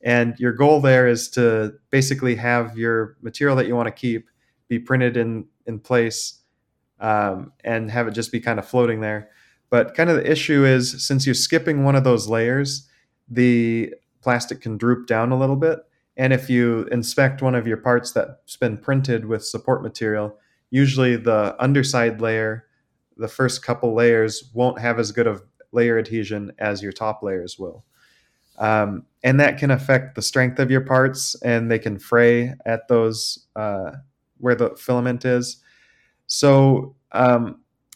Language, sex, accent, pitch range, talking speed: English, male, American, 115-135 Hz, 170 wpm